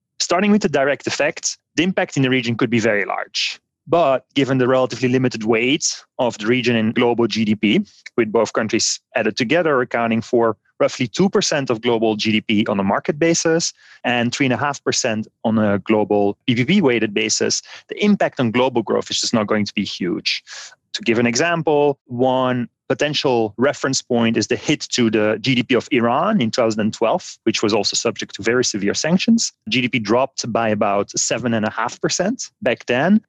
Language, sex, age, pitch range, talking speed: English, male, 30-49, 110-140 Hz, 170 wpm